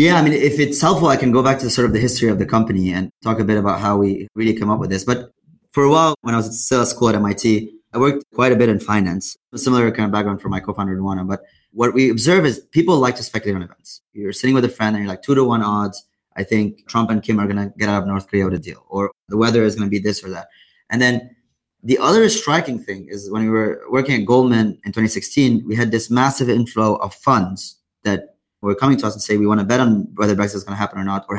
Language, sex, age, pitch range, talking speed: English, male, 20-39, 100-120 Hz, 290 wpm